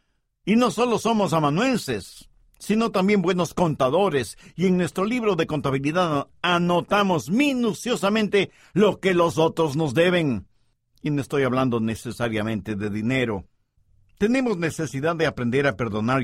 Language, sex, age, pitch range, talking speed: English, male, 50-69, 125-195 Hz, 135 wpm